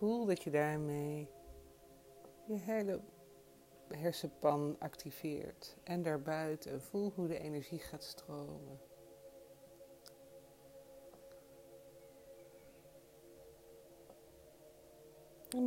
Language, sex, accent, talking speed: Dutch, female, Dutch, 65 wpm